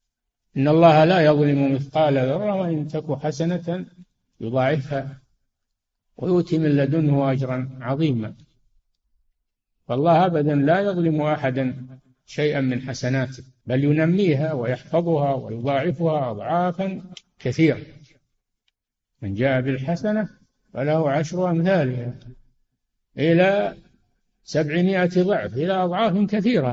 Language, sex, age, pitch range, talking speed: Arabic, male, 60-79, 130-165 Hz, 90 wpm